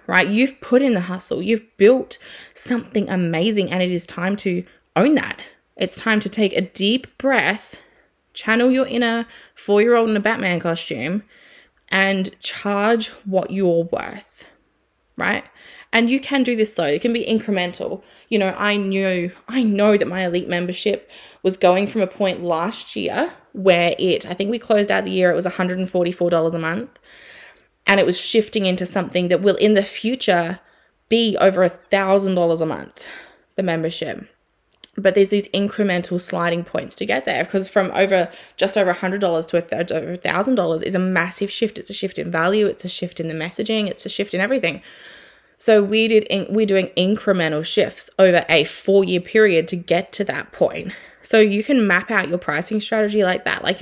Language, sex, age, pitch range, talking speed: English, female, 20-39, 180-215 Hz, 185 wpm